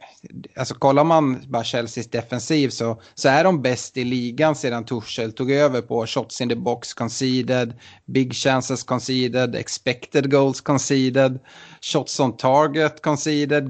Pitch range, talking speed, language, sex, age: 115-145 Hz, 145 wpm, Swedish, male, 30-49